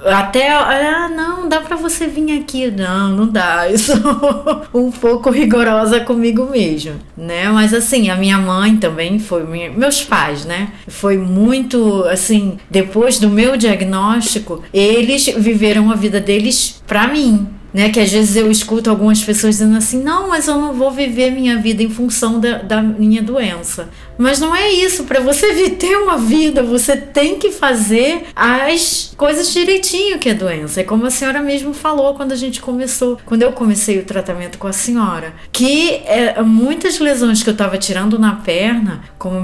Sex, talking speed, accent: female, 175 wpm, Brazilian